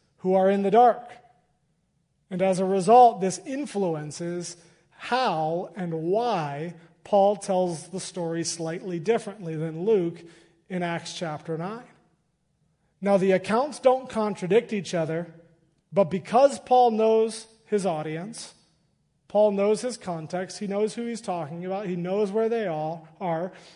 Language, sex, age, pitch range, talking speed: English, male, 30-49, 170-215 Hz, 140 wpm